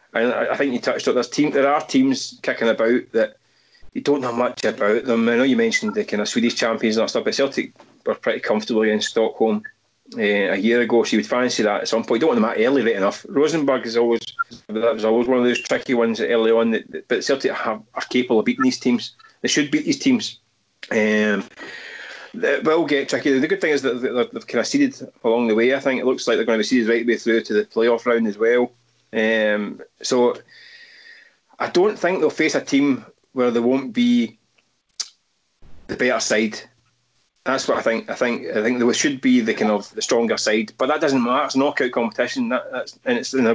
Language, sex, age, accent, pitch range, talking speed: English, male, 30-49, British, 110-160 Hz, 230 wpm